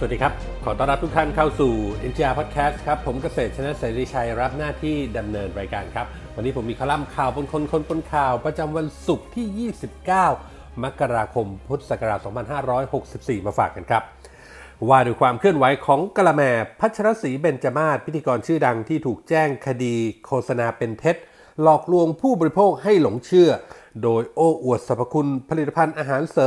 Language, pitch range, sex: Thai, 125-165 Hz, male